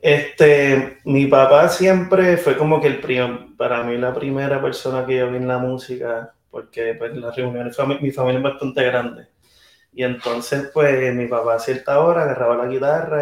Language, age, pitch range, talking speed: Spanish, 30-49, 120-140 Hz, 185 wpm